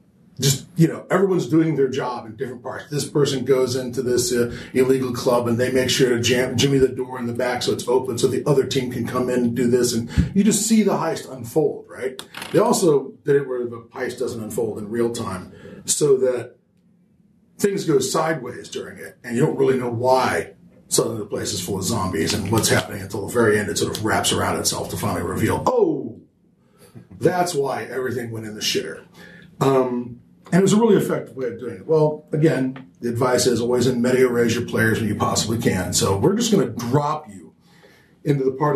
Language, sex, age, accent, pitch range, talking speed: English, male, 40-59, American, 120-170 Hz, 225 wpm